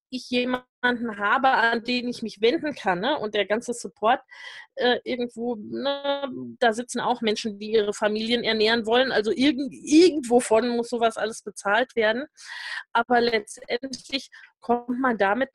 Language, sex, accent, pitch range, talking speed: German, female, German, 205-250 Hz, 145 wpm